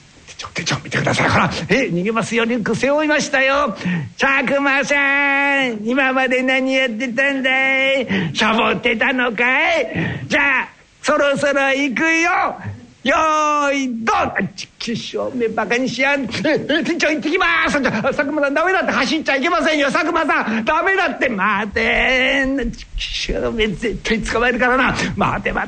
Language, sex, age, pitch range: Japanese, male, 60-79, 190-275 Hz